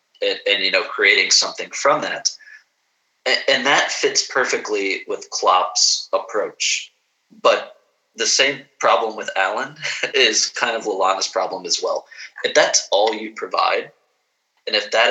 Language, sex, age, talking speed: English, male, 30-49, 145 wpm